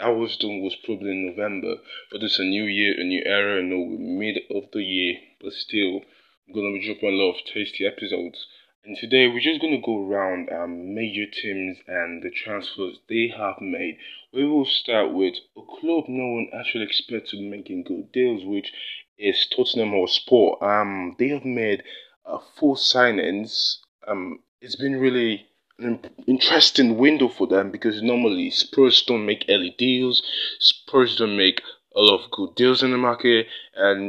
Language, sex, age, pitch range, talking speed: English, male, 20-39, 105-145 Hz, 180 wpm